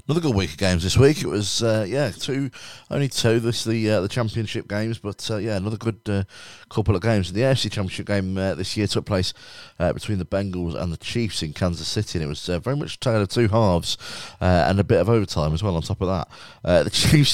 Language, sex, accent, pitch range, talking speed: English, male, British, 85-110 Hz, 255 wpm